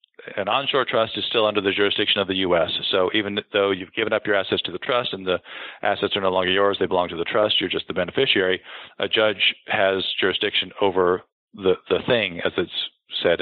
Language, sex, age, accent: English, male, 40-59, American